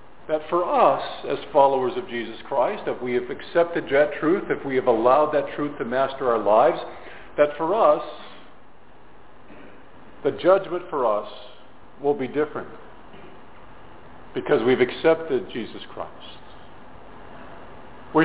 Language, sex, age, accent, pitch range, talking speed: English, male, 50-69, American, 135-185 Hz, 130 wpm